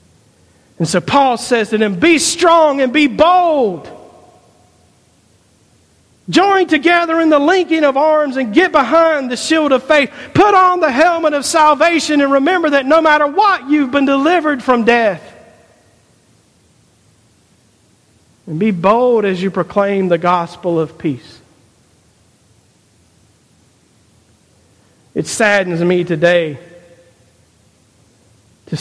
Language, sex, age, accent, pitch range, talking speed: English, male, 50-69, American, 170-285 Hz, 120 wpm